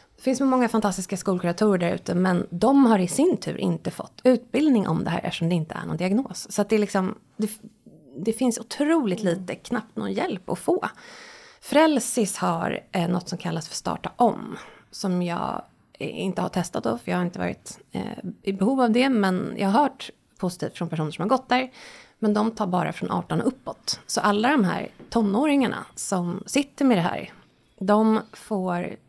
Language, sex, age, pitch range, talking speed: Swedish, female, 20-39, 180-245 Hz, 195 wpm